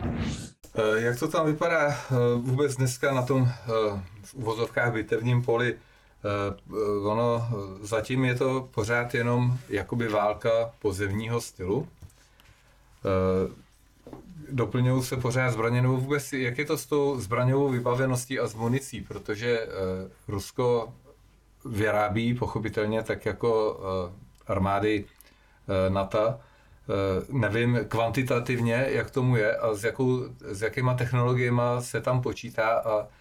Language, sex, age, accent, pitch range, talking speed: Czech, male, 40-59, native, 105-125 Hz, 105 wpm